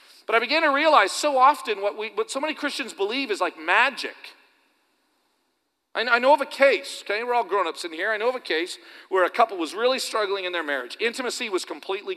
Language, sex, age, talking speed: English, male, 40-59, 220 wpm